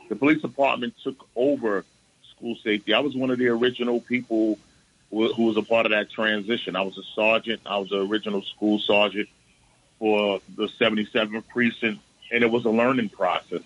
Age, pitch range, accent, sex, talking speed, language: 30-49, 100-115 Hz, American, male, 185 wpm, English